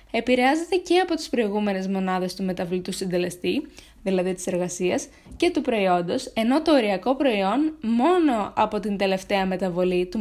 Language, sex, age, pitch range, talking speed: Greek, female, 20-39, 190-270 Hz, 145 wpm